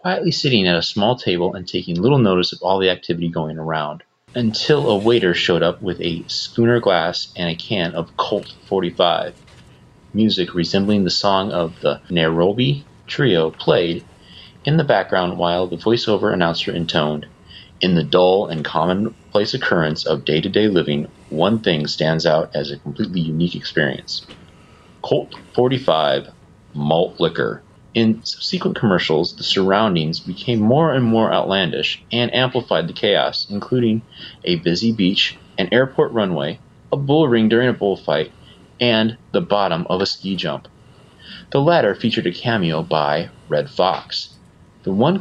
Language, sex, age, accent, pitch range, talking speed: English, male, 30-49, American, 85-120 Hz, 150 wpm